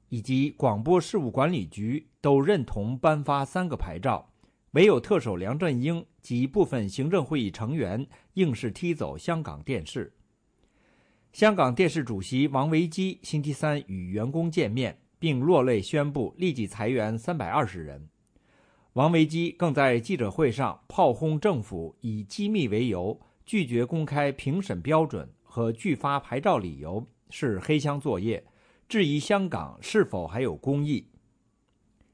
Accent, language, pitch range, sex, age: Chinese, English, 115-170 Hz, male, 50-69